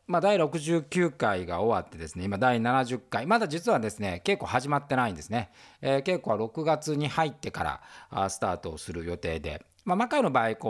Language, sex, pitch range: Japanese, male, 100-170 Hz